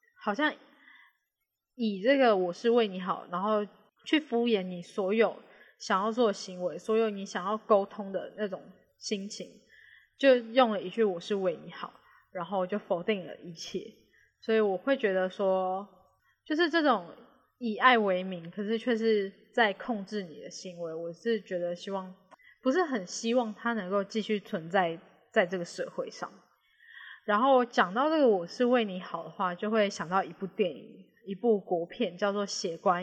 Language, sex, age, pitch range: Chinese, female, 10-29, 185-235 Hz